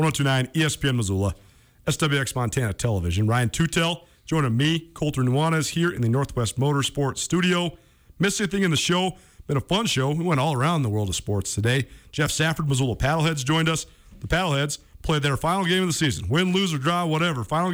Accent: American